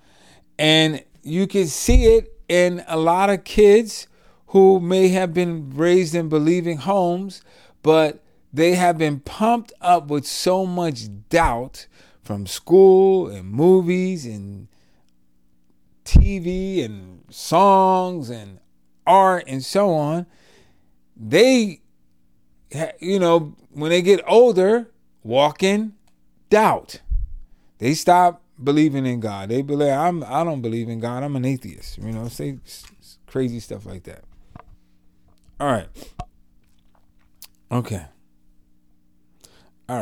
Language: English